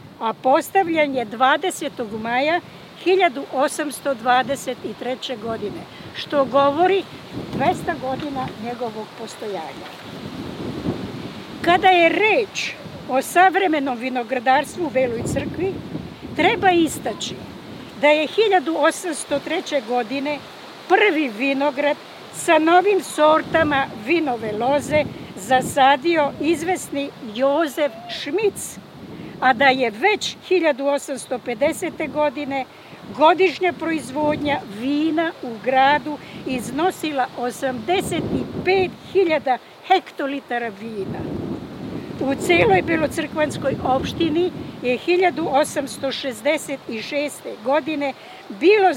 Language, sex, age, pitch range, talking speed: Czech, female, 60-79, 260-340 Hz, 75 wpm